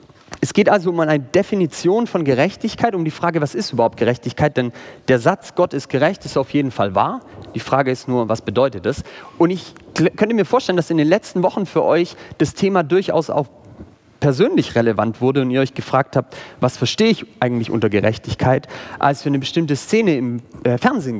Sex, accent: male, German